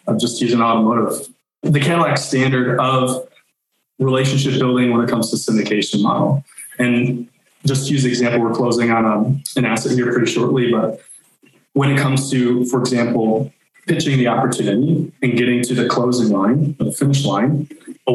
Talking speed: 170 wpm